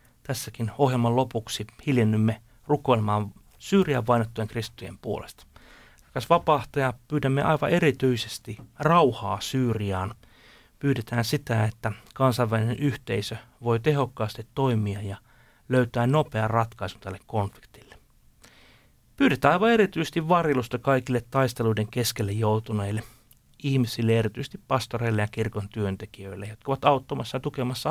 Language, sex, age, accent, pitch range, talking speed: Finnish, male, 30-49, native, 105-135 Hz, 105 wpm